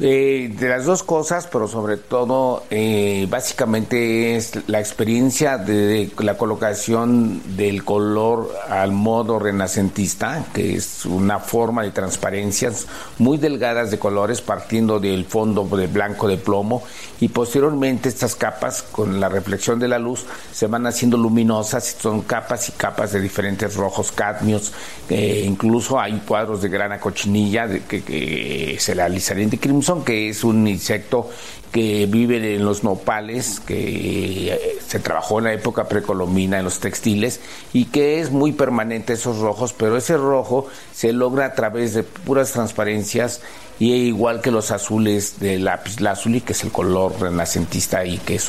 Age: 50-69